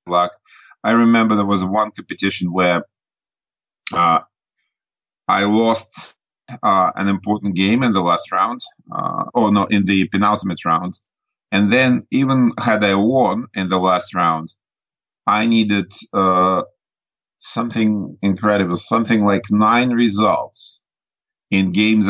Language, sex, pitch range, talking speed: English, male, 95-110 Hz, 130 wpm